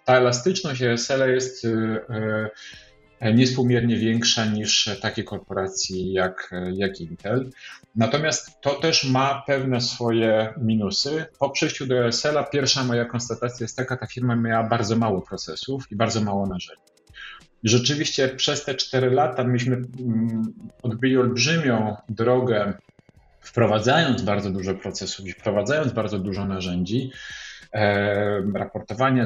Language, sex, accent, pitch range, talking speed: Polish, male, native, 105-130 Hz, 115 wpm